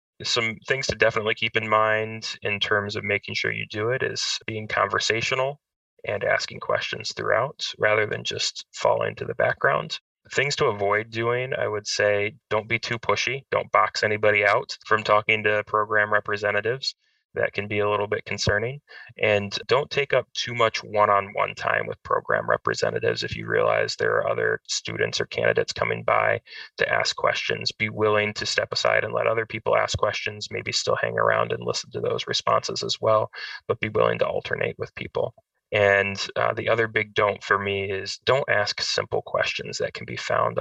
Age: 20-39